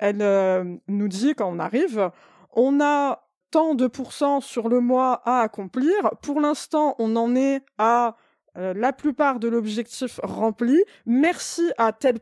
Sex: female